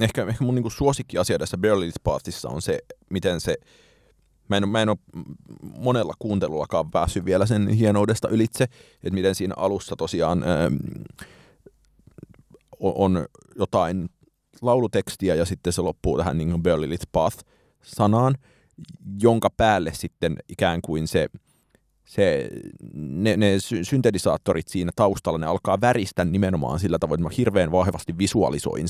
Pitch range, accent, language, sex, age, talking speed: 90-110 Hz, native, Finnish, male, 30-49, 135 wpm